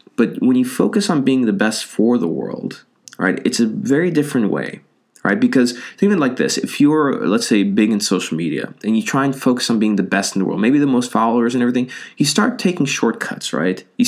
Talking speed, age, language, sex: 230 wpm, 20-39, English, male